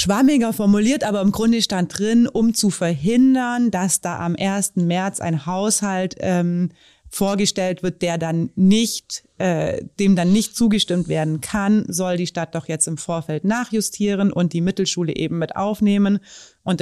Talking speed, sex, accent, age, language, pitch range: 160 wpm, female, German, 30-49, German, 165-205 Hz